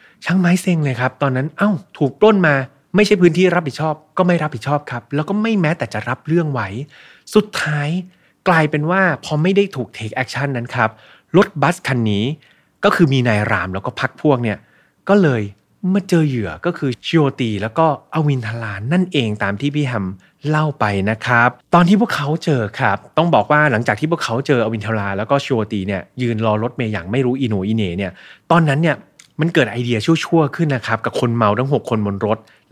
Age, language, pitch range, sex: 20-39, Thai, 110-150 Hz, male